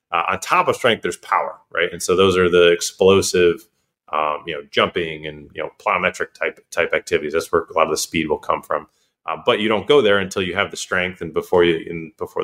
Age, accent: 30-49, American